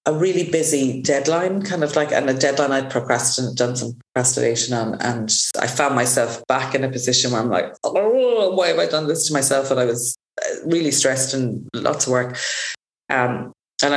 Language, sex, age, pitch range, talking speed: English, female, 30-49, 130-165 Hz, 200 wpm